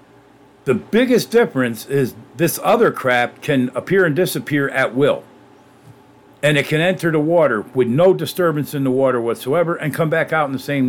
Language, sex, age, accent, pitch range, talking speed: English, male, 50-69, American, 130-160 Hz, 180 wpm